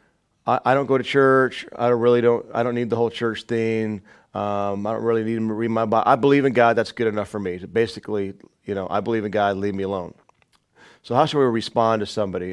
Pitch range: 115-160 Hz